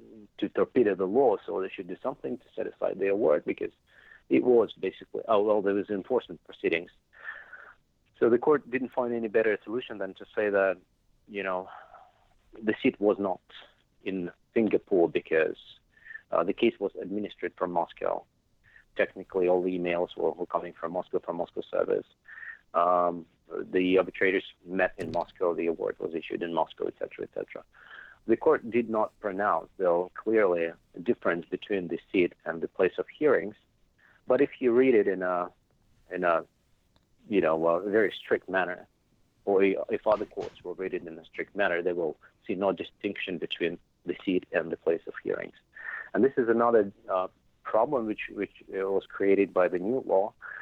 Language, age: English, 50-69